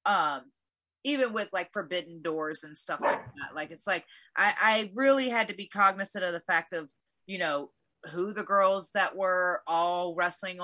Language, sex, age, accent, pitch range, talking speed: English, female, 30-49, American, 165-200 Hz, 190 wpm